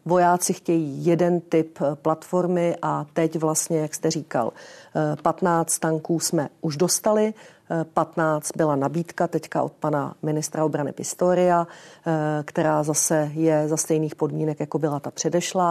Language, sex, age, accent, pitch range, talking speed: Czech, female, 40-59, native, 155-170 Hz, 135 wpm